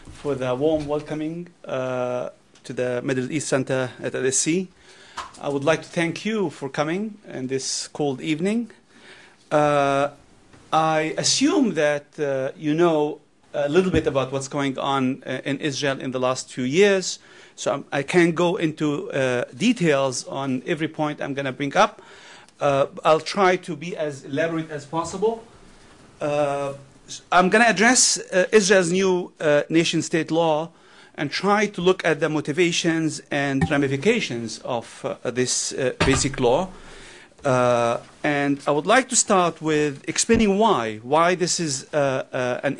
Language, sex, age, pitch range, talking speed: English, male, 40-59, 140-180 Hz, 155 wpm